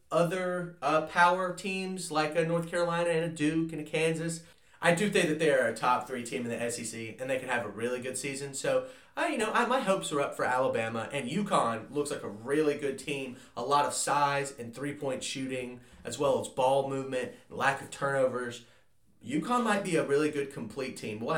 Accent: American